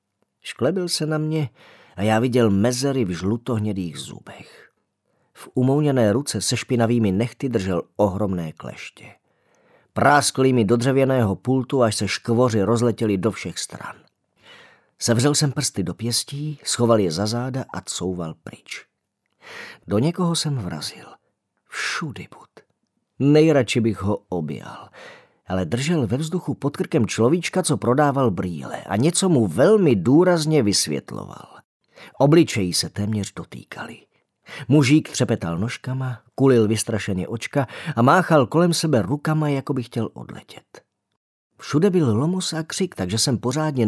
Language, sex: Czech, male